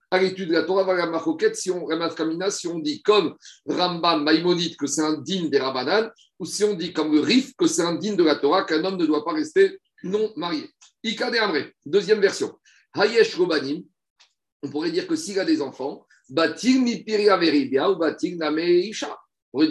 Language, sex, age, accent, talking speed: French, male, 50-69, French, 165 wpm